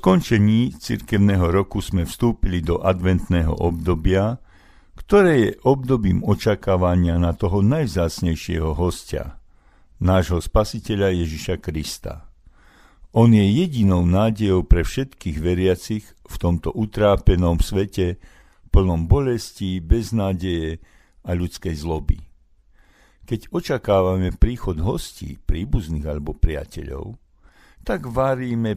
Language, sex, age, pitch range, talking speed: Slovak, male, 60-79, 80-100 Hz, 100 wpm